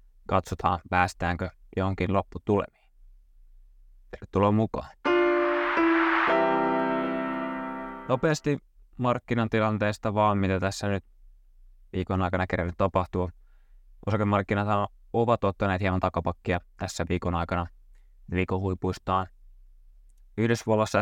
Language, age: Finnish, 20-39